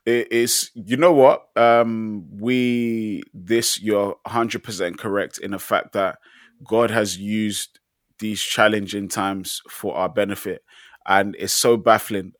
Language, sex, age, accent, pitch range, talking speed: English, male, 20-39, British, 100-115 Hz, 130 wpm